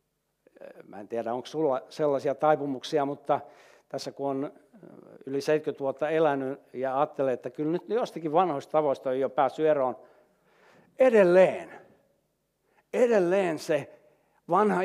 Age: 60-79